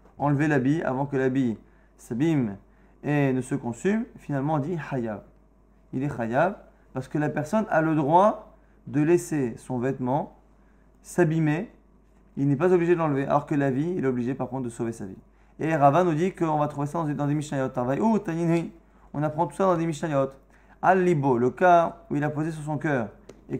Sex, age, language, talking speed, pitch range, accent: male, 20-39, French, 195 wpm, 135-170 Hz, French